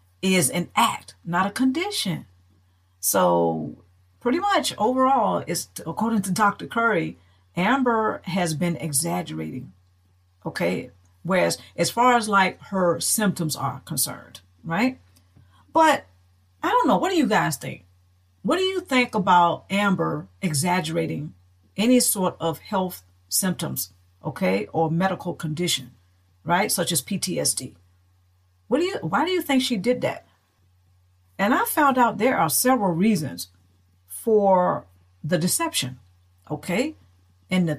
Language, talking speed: English, 135 wpm